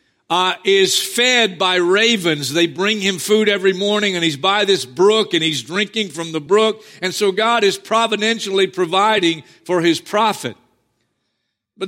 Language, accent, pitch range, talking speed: English, American, 180-235 Hz, 160 wpm